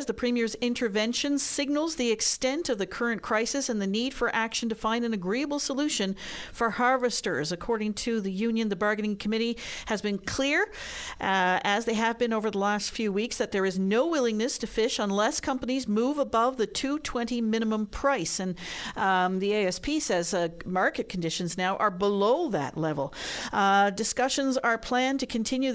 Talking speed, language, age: 175 wpm, English, 50-69